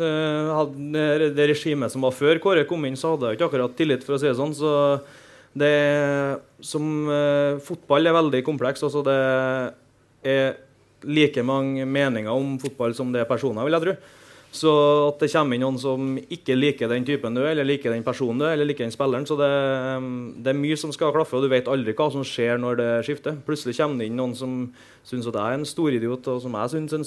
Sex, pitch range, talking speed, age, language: male, 120-140 Hz, 215 wpm, 20-39, English